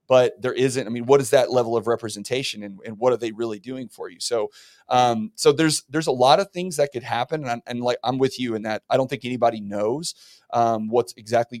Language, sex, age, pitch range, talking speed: English, male, 30-49, 110-130 Hz, 255 wpm